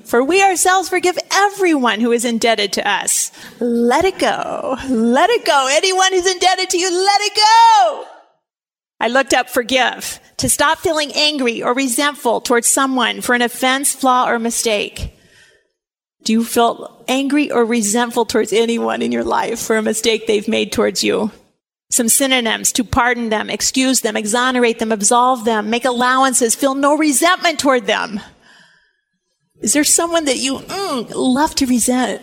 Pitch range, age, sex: 235-320 Hz, 40-59, female